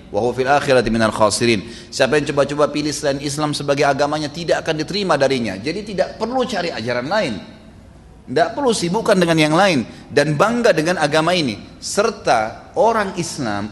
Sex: male